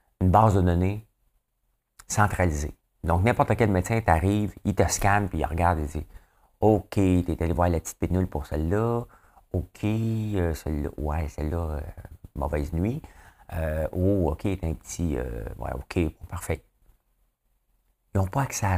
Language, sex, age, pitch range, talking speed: French, male, 50-69, 80-100 Hz, 165 wpm